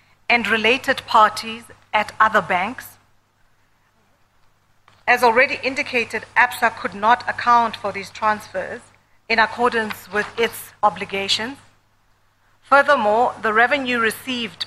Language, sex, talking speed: English, female, 100 wpm